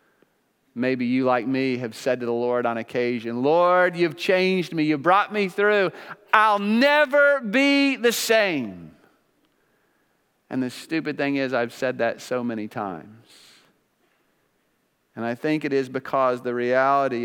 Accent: American